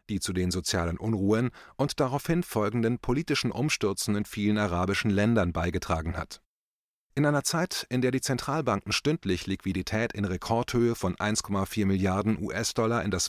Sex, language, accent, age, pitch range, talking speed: male, German, German, 30-49, 95-125 Hz, 145 wpm